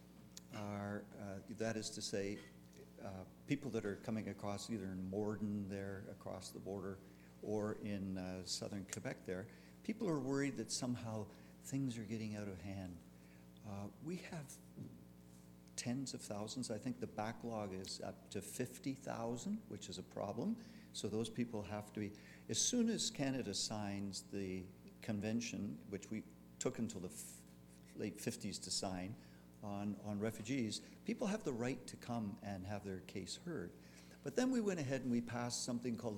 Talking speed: 165 wpm